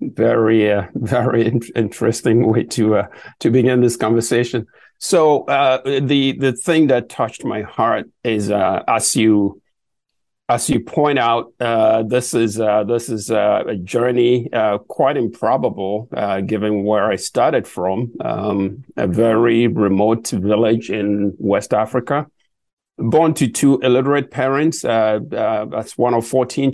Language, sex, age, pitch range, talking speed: English, male, 50-69, 110-135 Hz, 150 wpm